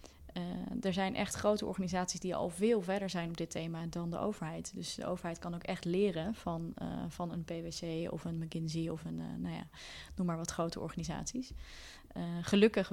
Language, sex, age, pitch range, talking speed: Dutch, female, 20-39, 160-180 Hz, 205 wpm